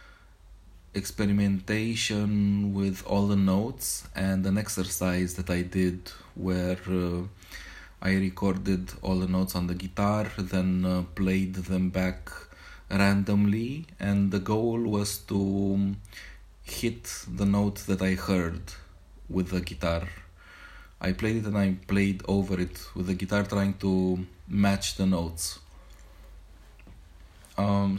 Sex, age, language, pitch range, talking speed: male, 20-39, English, 85-100 Hz, 125 wpm